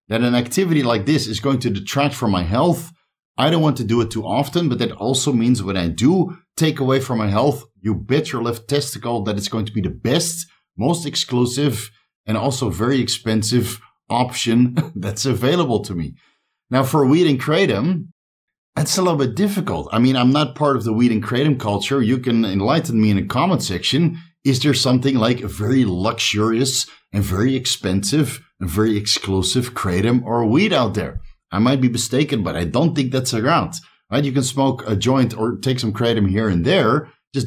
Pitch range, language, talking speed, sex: 110-145 Hz, English, 200 wpm, male